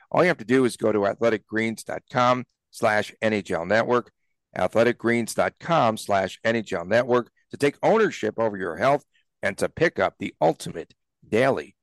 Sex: male